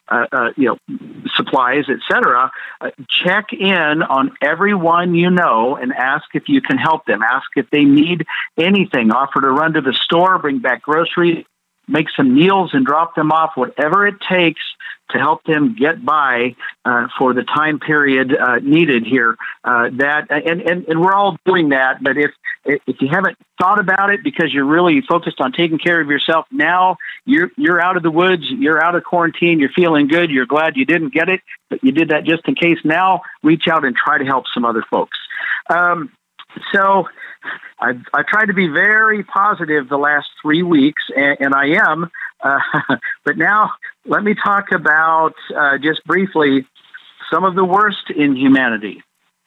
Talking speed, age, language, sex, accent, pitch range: 185 wpm, 50-69, English, male, American, 145-190 Hz